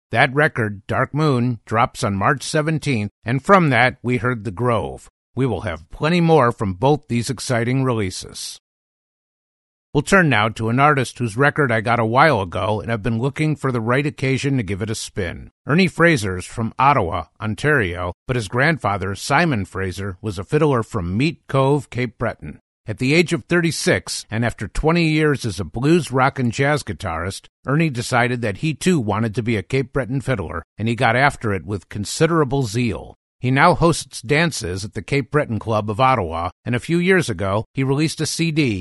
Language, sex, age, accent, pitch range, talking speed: English, male, 50-69, American, 110-150 Hz, 195 wpm